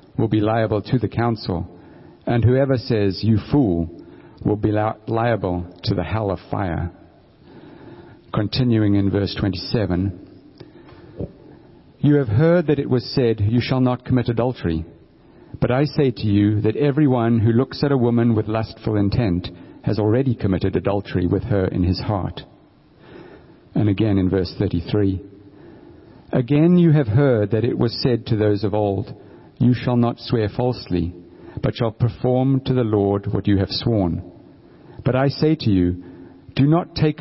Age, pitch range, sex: 50-69, 100-130 Hz, male